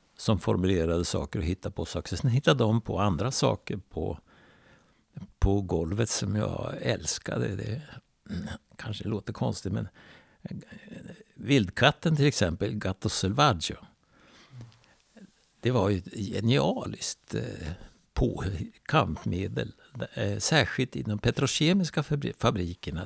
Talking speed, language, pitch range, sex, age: 105 wpm, Swedish, 100-135 Hz, male, 60-79